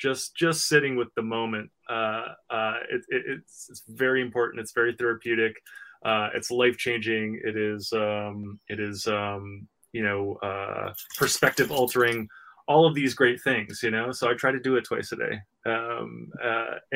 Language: English